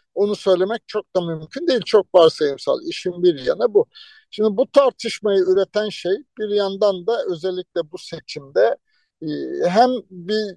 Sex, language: male, Turkish